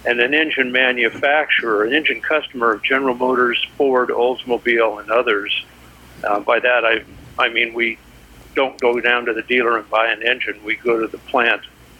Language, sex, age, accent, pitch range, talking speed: English, male, 60-79, American, 100-130 Hz, 180 wpm